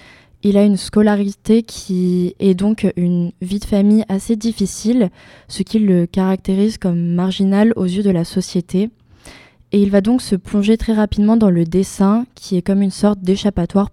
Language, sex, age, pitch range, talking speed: French, female, 20-39, 185-215 Hz, 175 wpm